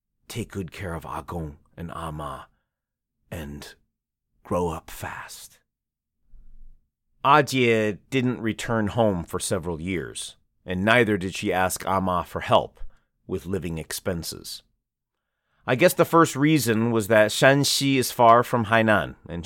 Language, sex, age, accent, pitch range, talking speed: English, male, 40-59, American, 95-125 Hz, 130 wpm